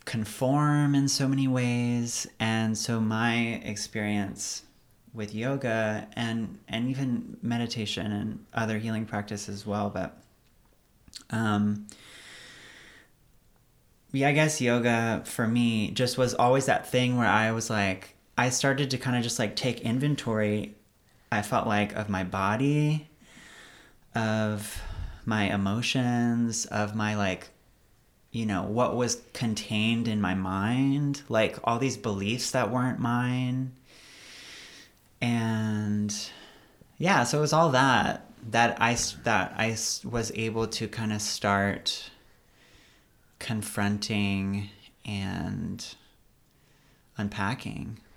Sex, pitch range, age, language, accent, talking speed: male, 105-120 Hz, 30-49, English, American, 115 wpm